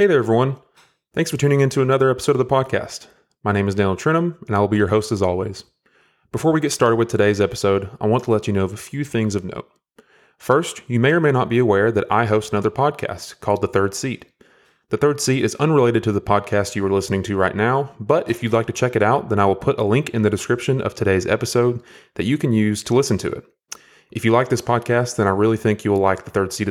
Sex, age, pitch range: male, 20-39, 105-135 Hz